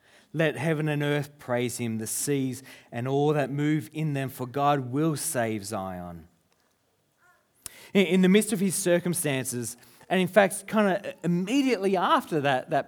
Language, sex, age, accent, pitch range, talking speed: English, male, 30-49, Australian, 125-175 Hz, 165 wpm